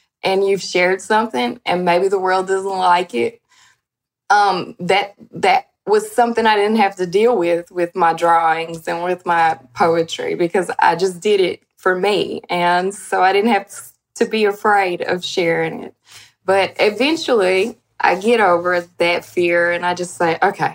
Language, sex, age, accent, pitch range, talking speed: English, female, 10-29, American, 175-195 Hz, 170 wpm